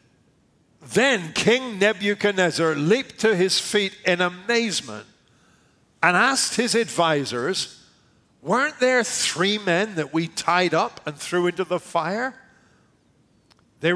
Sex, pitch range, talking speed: male, 170-240 Hz, 115 wpm